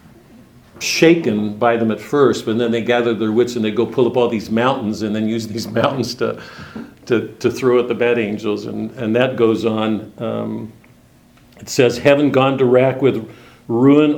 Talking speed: 195 wpm